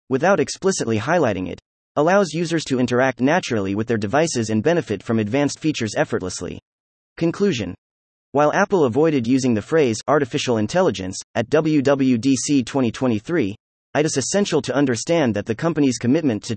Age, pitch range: 30-49, 110-155 Hz